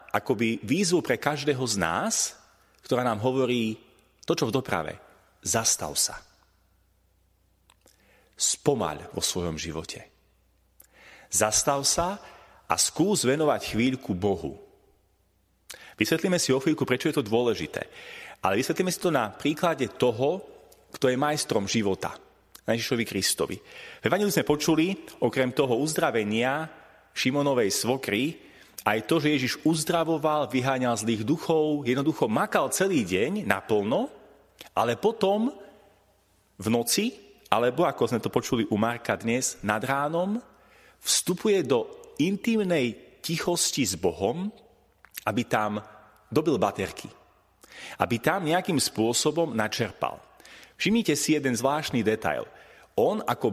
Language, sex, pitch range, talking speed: Slovak, male, 110-170 Hz, 120 wpm